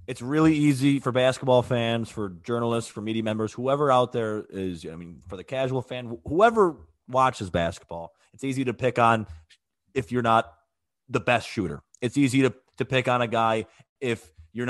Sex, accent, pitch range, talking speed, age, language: male, American, 95-125 Hz, 185 wpm, 30-49, English